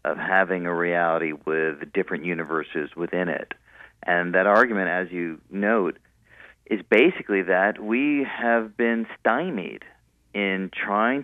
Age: 40-59